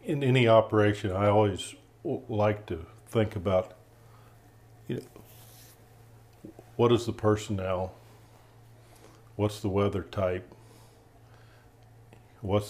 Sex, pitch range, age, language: male, 100-115 Hz, 50-69, English